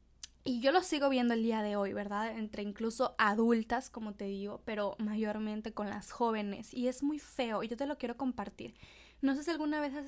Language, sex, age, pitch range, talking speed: Spanish, female, 10-29, 210-275 Hz, 220 wpm